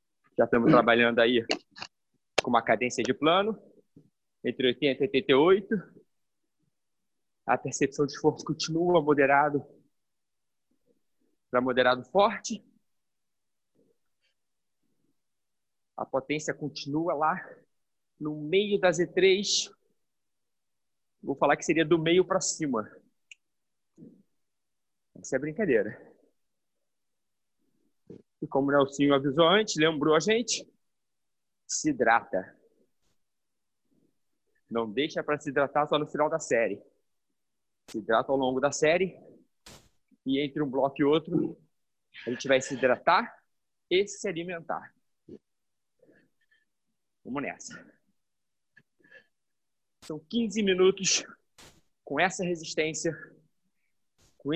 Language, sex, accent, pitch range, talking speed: Portuguese, male, Brazilian, 140-185 Hz, 100 wpm